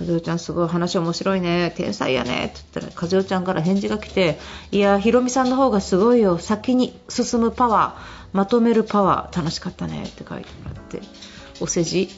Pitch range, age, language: 175-260 Hz, 40-59, Japanese